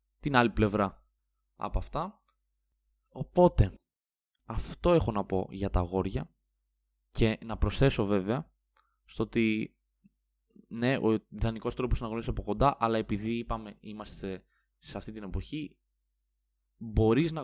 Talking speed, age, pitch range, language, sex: 125 wpm, 20-39, 100-120 Hz, Greek, male